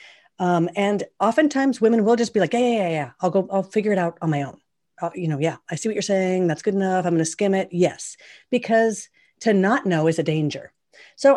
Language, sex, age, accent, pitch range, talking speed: English, female, 40-59, American, 165-220 Hz, 235 wpm